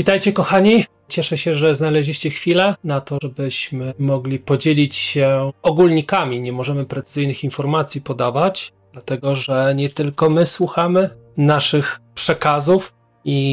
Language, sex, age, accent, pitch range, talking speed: Polish, male, 30-49, native, 130-170 Hz, 125 wpm